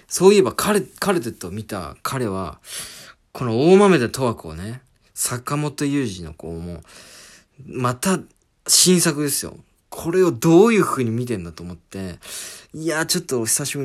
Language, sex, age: Japanese, male, 40-59